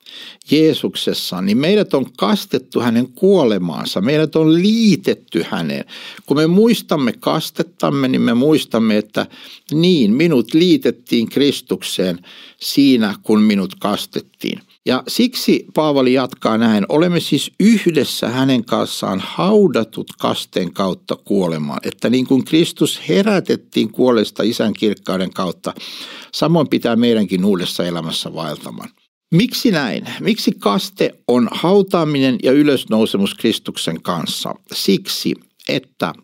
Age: 60-79